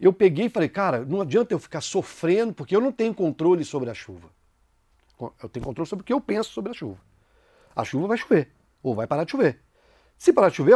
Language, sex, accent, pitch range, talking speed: Portuguese, male, Brazilian, 135-230 Hz, 235 wpm